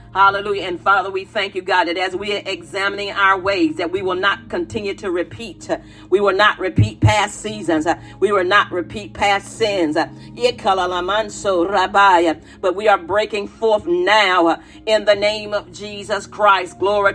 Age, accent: 40-59, American